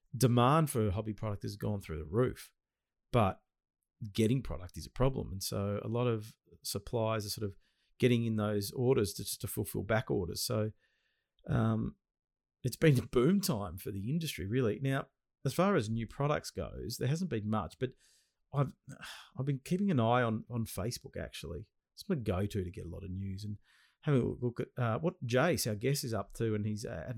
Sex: male